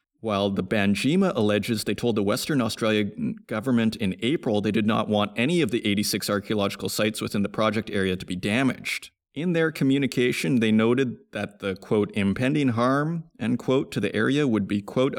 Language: English